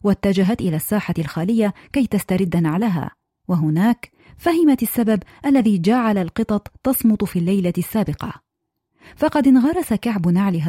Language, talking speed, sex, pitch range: Arabic, 120 wpm, female, 185-240 Hz